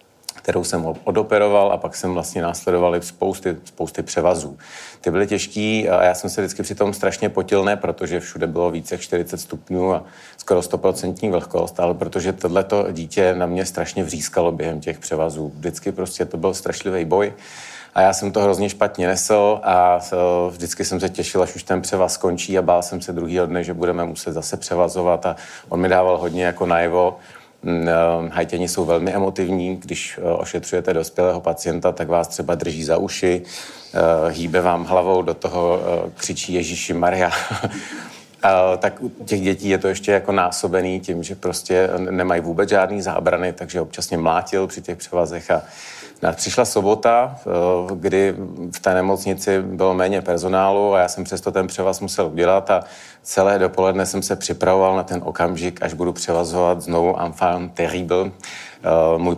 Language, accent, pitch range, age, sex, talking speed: Czech, native, 85-95 Hz, 40-59, male, 170 wpm